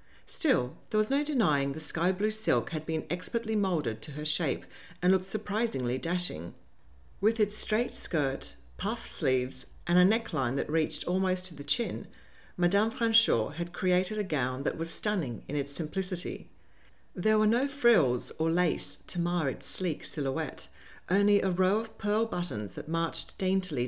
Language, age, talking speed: English, 40-59, 165 wpm